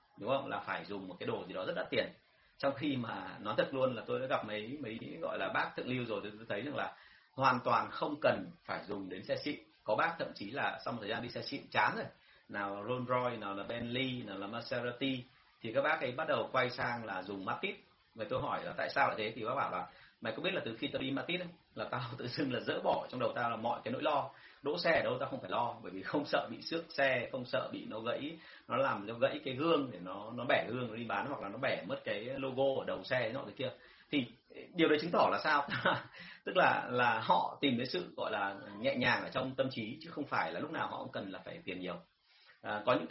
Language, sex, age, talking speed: Vietnamese, male, 30-49, 275 wpm